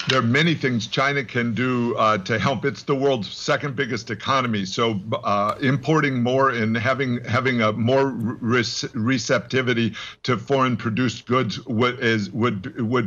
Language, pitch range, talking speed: English, 115-135 Hz, 155 wpm